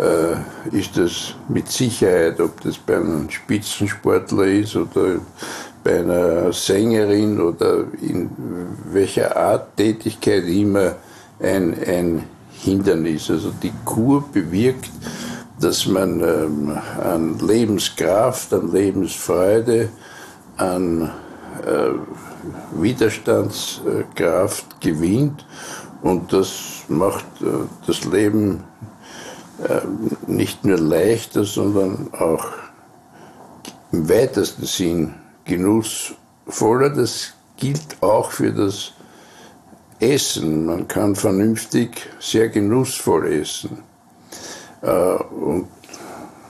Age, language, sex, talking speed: 60-79, German, male, 80 wpm